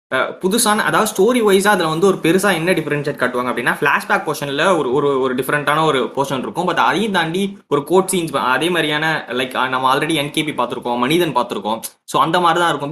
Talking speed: 190 wpm